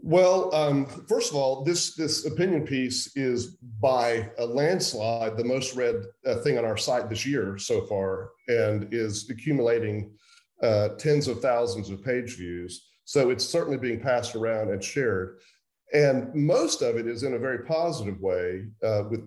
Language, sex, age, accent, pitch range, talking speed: English, male, 40-59, American, 110-155 Hz, 170 wpm